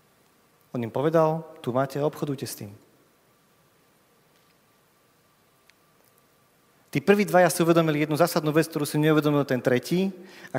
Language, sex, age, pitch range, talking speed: Slovak, male, 40-59, 120-160 Hz, 130 wpm